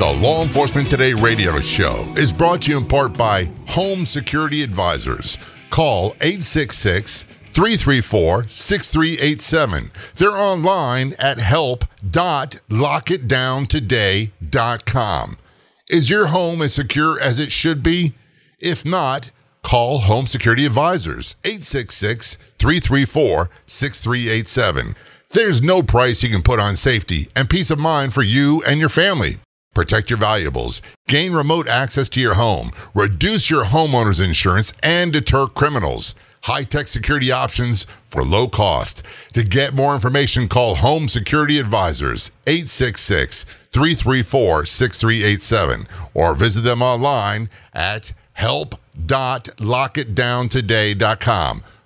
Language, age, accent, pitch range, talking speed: English, 50-69, American, 110-145 Hz, 105 wpm